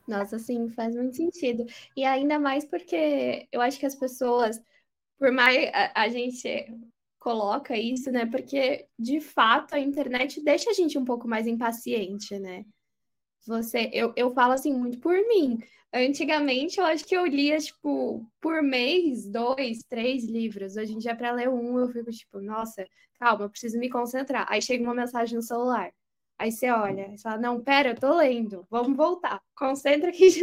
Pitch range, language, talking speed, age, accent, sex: 235-295 Hz, Portuguese, 175 wpm, 10-29, Brazilian, female